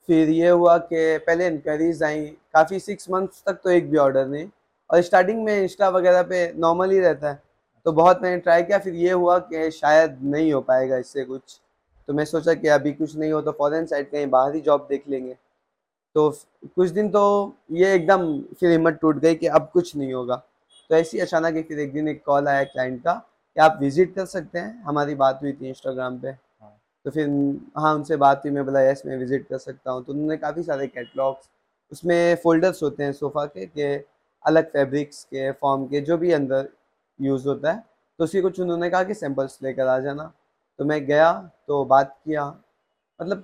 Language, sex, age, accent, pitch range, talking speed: Hindi, male, 20-39, native, 140-175 Hz, 205 wpm